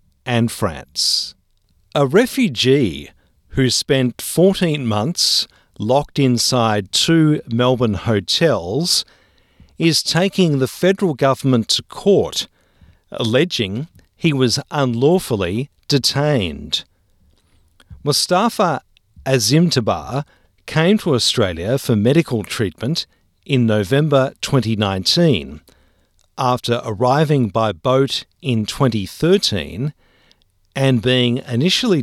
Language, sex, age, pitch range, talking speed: English, male, 50-69, 105-150 Hz, 85 wpm